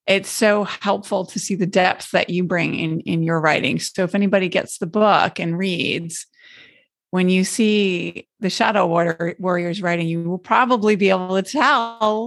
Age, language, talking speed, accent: 30-49, English, 180 wpm, American